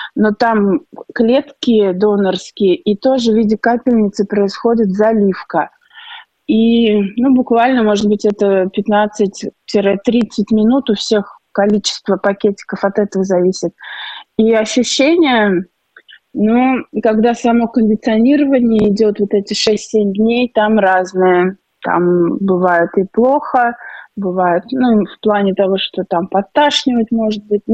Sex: female